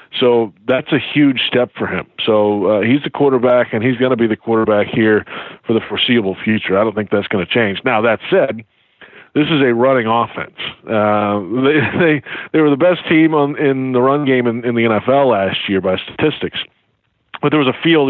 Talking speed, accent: 215 wpm, American